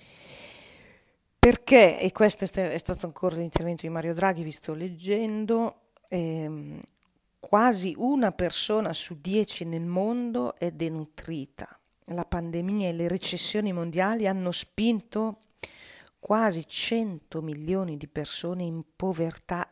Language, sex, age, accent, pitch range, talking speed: Italian, female, 40-59, native, 160-215 Hz, 115 wpm